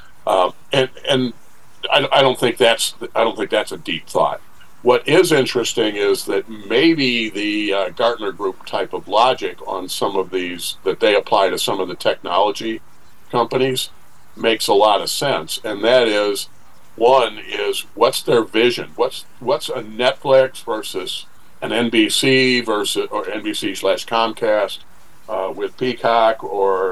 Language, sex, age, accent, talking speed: English, male, 50-69, American, 155 wpm